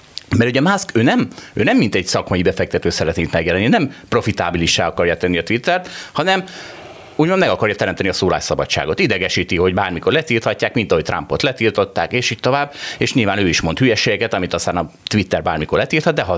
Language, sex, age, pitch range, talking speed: Hungarian, male, 30-49, 105-145 Hz, 185 wpm